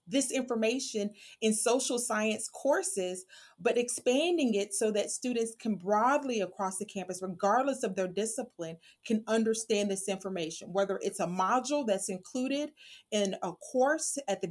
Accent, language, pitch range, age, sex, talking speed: American, English, 195-255 Hz, 30-49, female, 150 wpm